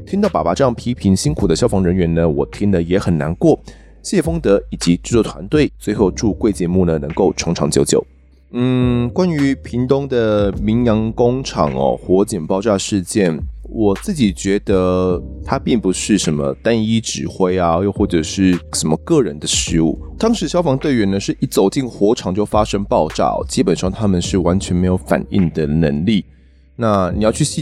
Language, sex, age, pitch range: Chinese, male, 20-39, 85-115 Hz